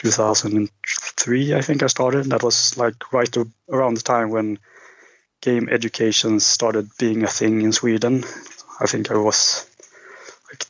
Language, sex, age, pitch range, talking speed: English, male, 20-39, 110-125 Hz, 145 wpm